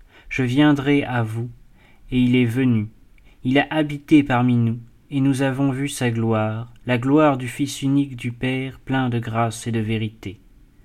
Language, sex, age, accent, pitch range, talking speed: French, male, 30-49, French, 120-150 Hz, 175 wpm